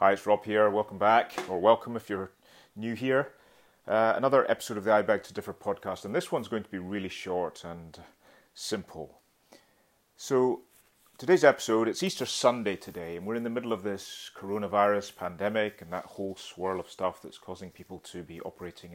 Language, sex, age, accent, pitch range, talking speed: English, male, 30-49, British, 90-105 Hz, 190 wpm